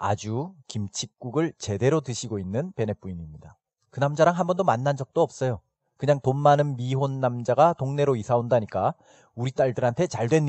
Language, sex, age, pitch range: Korean, male, 40-59, 110-150 Hz